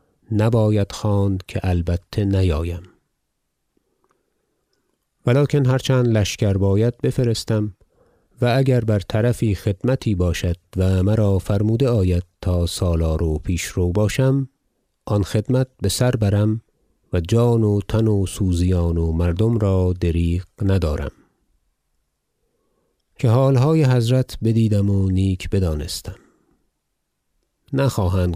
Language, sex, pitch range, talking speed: Persian, male, 85-110 Hz, 105 wpm